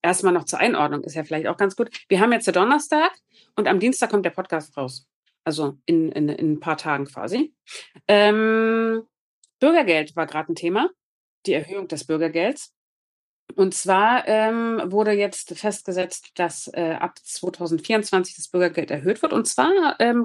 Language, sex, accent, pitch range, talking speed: German, female, German, 170-225 Hz, 170 wpm